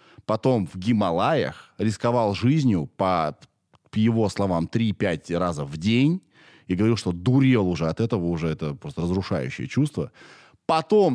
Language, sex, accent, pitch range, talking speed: Russian, male, native, 100-165 Hz, 140 wpm